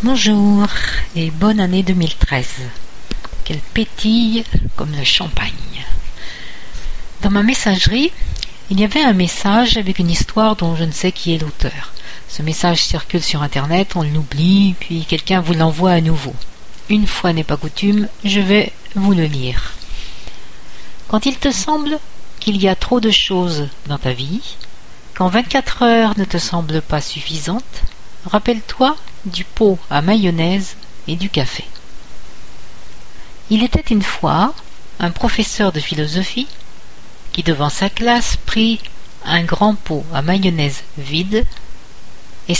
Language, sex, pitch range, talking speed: French, female, 155-210 Hz, 140 wpm